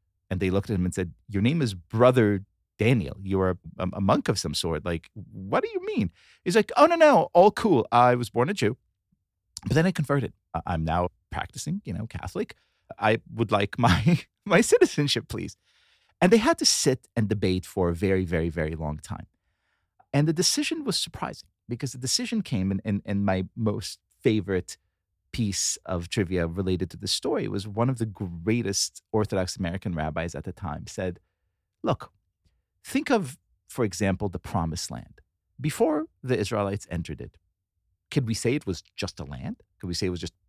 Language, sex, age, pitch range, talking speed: English, male, 30-49, 90-125 Hz, 190 wpm